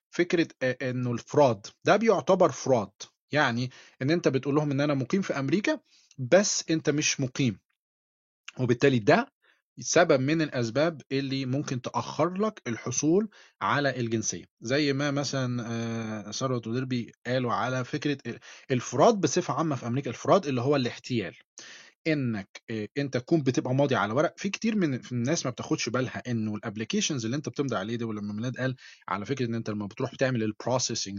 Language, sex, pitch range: Arabic, male, 120-160 Hz